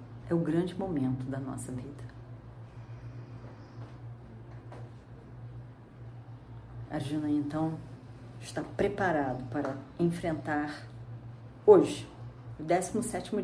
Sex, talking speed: female, 80 wpm